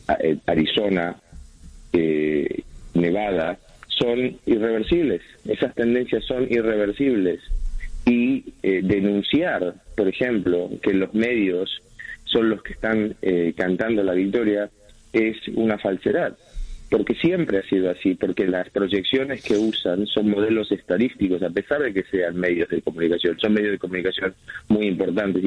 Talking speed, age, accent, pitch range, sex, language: 130 wpm, 30-49, Argentinian, 90-110 Hz, male, Spanish